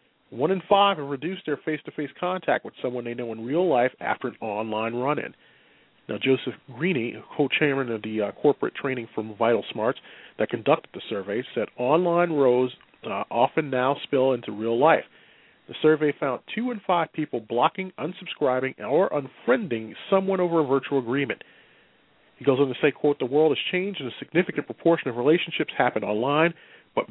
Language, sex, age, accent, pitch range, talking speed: English, male, 40-59, American, 115-150 Hz, 175 wpm